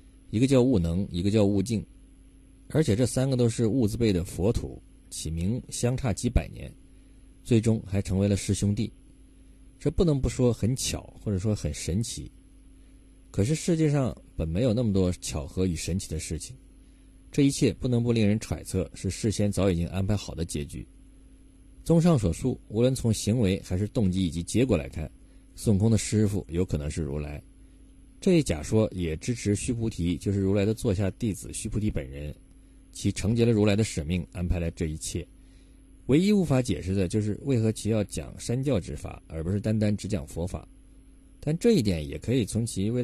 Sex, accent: male, native